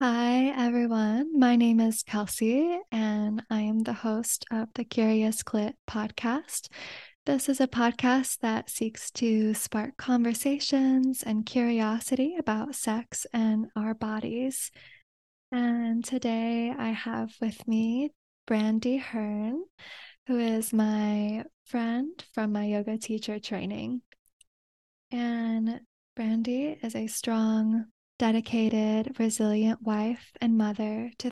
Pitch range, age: 220-245 Hz, 20-39